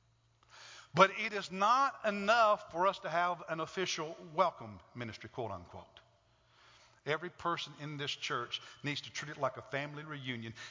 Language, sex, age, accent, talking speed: English, male, 50-69, American, 150 wpm